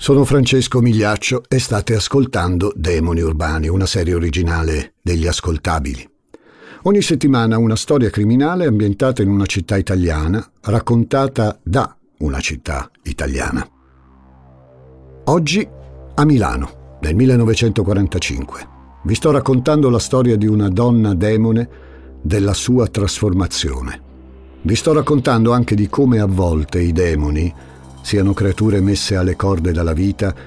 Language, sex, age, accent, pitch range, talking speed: Italian, male, 50-69, native, 80-125 Hz, 120 wpm